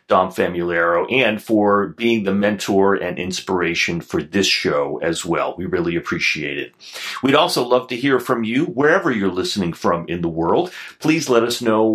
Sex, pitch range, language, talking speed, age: male, 90-120 Hz, English, 180 wpm, 40-59